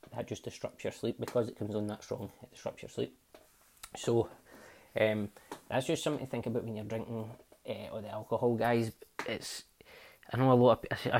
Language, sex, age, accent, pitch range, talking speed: English, male, 20-39, British, 105-120 Hz, 205 wpm